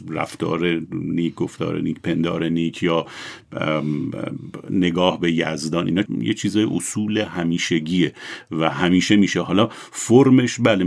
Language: Persian